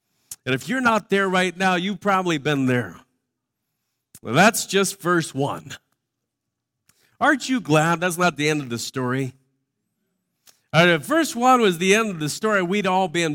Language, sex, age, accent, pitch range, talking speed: English, male, 50-69, American, 145-210 Hz, 185 wpm